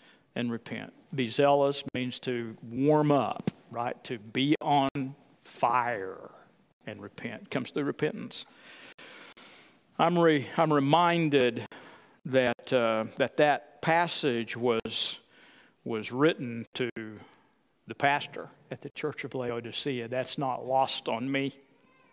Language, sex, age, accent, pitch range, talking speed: English, male, 50-69, American, 130-170 Hz, 115 wpm